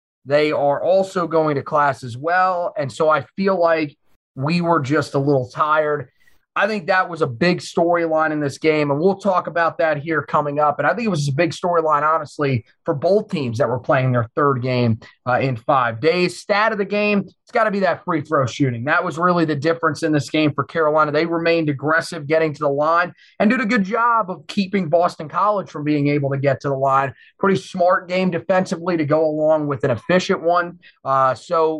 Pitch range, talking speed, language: 145-180 Hz, 225 wpm, English